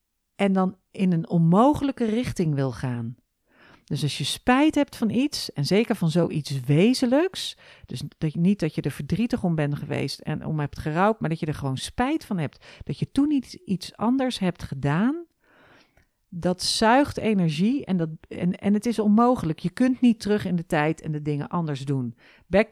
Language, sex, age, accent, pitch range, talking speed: Dutch, female, 40-59, Dutch, 160-220 Hz, 195 wpm